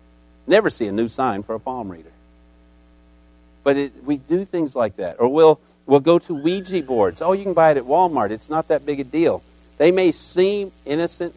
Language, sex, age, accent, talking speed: English, male, 50-69, American, 205 wpm